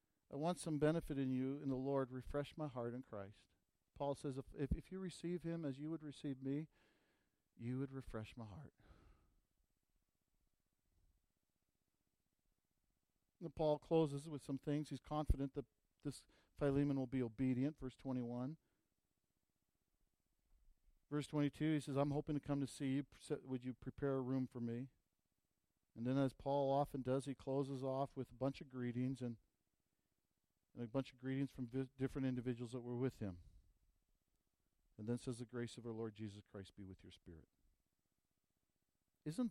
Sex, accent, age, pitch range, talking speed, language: male, American, 50-69, 115-140 Hz, 165 wpm, English